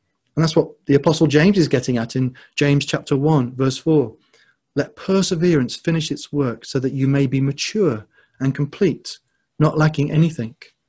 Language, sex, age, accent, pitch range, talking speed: English, male, 40-59, British, 130-165 Hz, 170 wpm